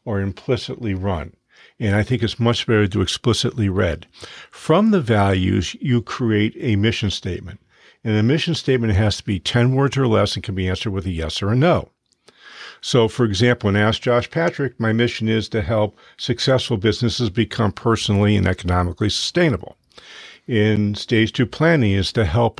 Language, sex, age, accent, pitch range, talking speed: English, male, 50-69, American, 100-120 Hz, 180 wpm